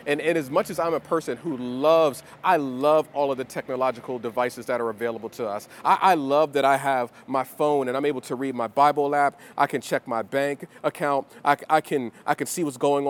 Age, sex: 40-59, male